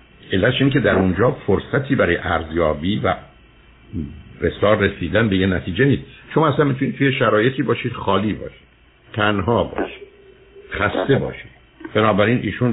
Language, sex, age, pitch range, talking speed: Persian, male, 60-79, 95-125 Hz, 130 wpm